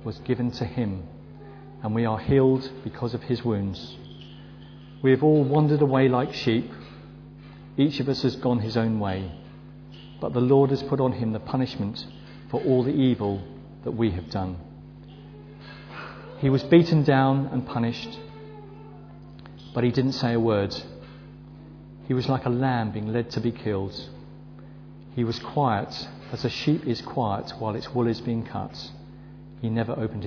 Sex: male